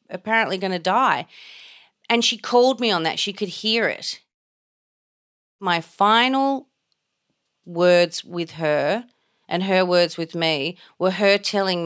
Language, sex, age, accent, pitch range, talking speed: English, female, 30-49, Australian, 155-200 Hz, 135 wpm